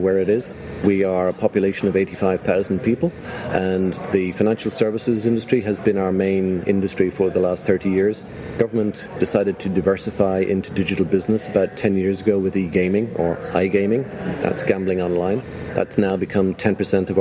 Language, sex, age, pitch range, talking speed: English, male, 40-59, 90-100 Hz, 165 wpm